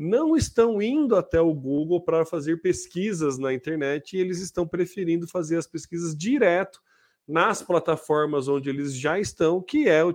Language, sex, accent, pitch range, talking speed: Portuguese, male, Brazilian, 150-190 Hz, 165 wpm